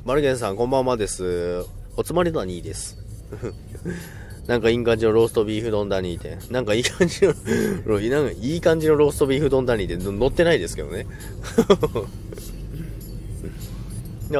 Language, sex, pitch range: Japanese, male, 100-135 Hz